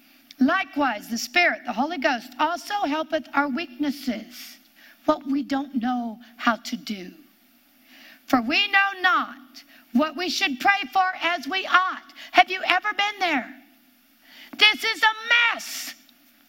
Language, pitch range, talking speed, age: English, 250-345 Hz, 140 wpm, 50-69